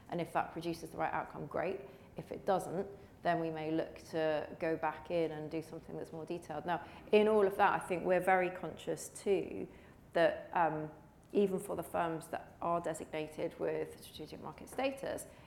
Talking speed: 190 wpm